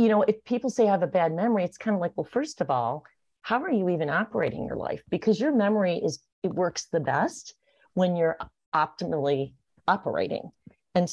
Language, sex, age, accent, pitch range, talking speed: English, female, 40-59, American, 160-215 Hz, 205 wpm